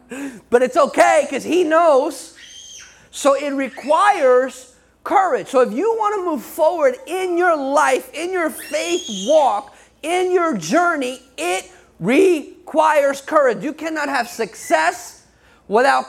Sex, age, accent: male, 30-49, American